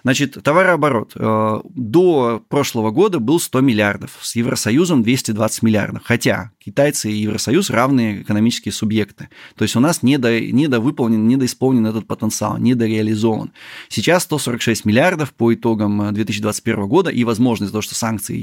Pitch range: 110-130 Hz